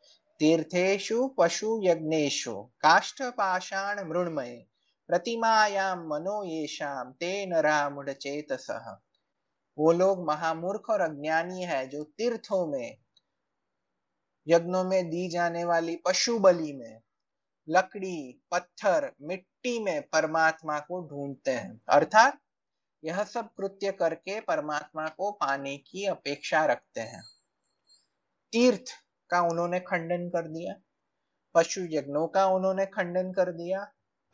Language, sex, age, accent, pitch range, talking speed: Hindi, male, 30-49, native, 160-200 Hz, 85 wpm